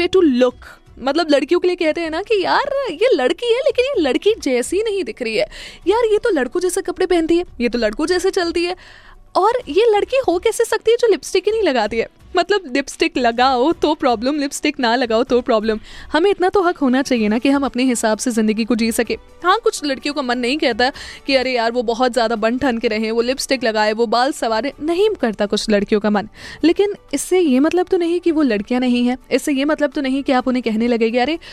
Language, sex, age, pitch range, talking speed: Hindi, female, 20-39, 240-330 Hz, 180 wpm